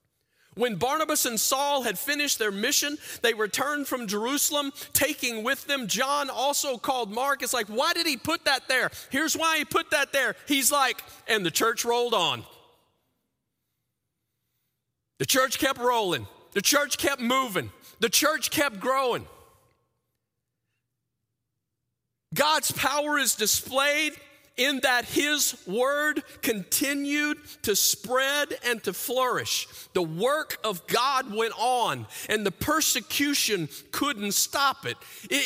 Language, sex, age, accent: English, male, 40-59, American